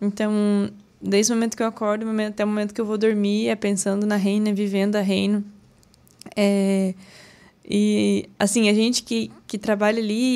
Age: 20-39